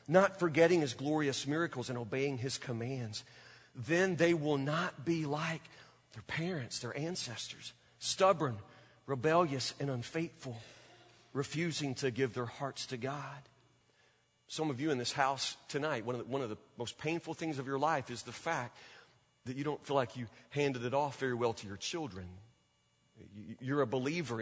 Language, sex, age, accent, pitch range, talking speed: English, male, 40-59, American, 120-160 Hz, 165 wpm